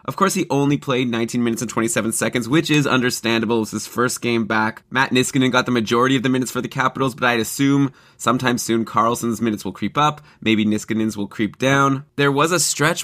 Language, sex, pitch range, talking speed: English, male, 110-135 Hz, 225 wpm